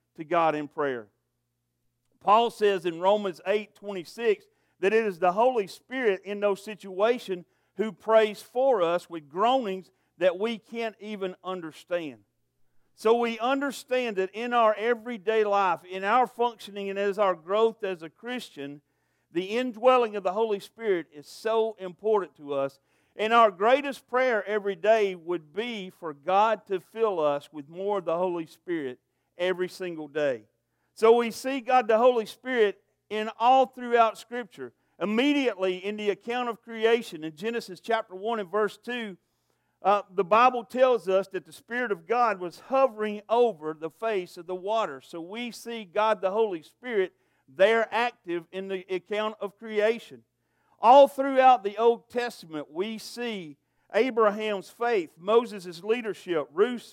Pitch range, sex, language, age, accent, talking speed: 180-230 Hz, male, English, 50-69, American, 155 wpm